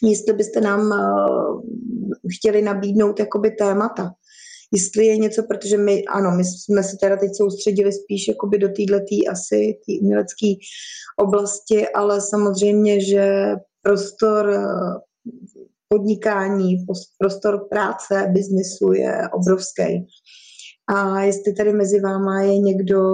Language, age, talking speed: Czech, 20-39, 110 wpm